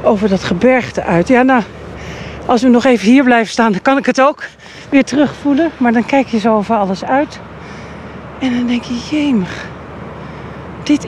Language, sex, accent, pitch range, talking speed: Dutch, female, Dutch, 185-255 Hz, 185 wpm